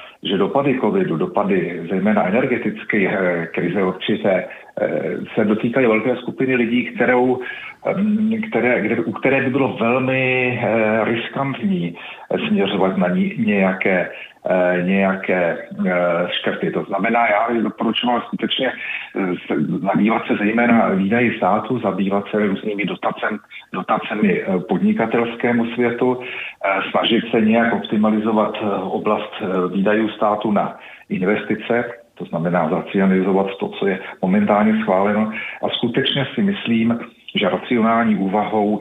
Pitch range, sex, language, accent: 95-120 Hz, male, Czech, native